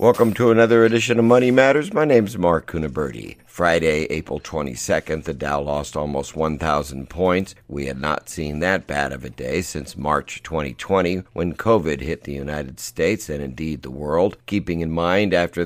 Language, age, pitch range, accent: English, 50-69, 75-100 Hz, American